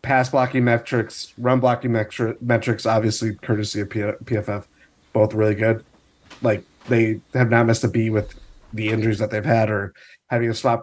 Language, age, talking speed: English, 30-49, 170 wpm